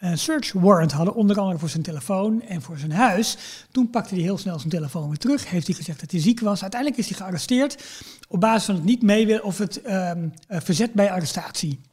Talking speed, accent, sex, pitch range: 225 wpm, Dutch, male, 170-220 Hz